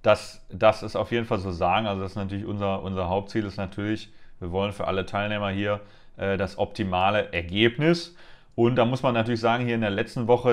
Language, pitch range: German, 100-120 Hz